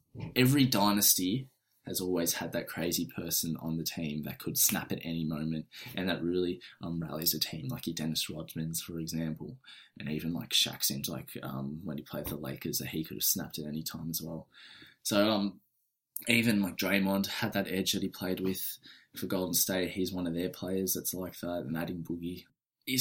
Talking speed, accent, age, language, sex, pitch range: 205 wpm, Australian, 20-39, English, male, 85-110 Hz